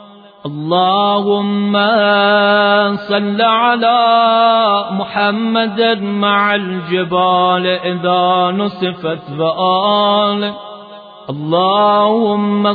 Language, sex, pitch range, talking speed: Persian, male, 200-235 Hz, 45 wpm